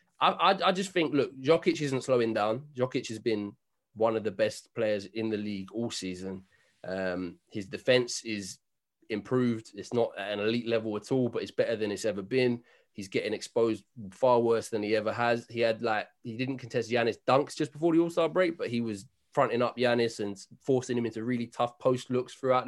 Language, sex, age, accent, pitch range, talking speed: English, male, 20-39, British, 115-135 Hz, 210 wpm